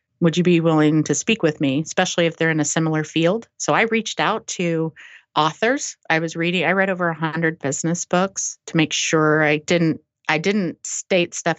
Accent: American